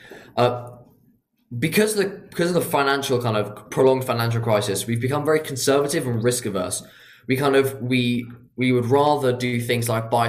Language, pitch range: English, 105-130 Hz